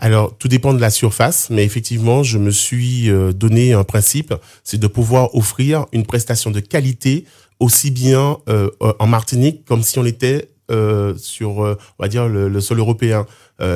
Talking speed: 180 wpm